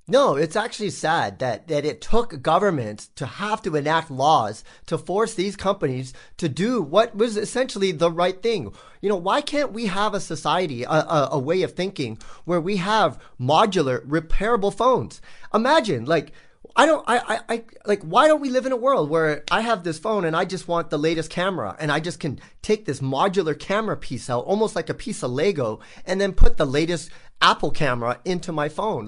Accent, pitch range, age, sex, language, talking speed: American, 145-200 Hz, 30-49, male, English, 205 wpm